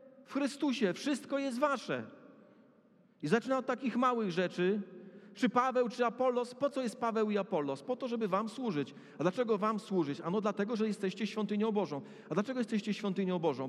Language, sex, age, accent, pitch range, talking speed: Polish, male, 40-59, native, 205-255 Hz, 180 wpm